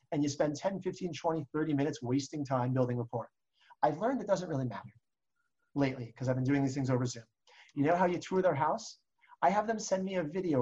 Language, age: English, 30-49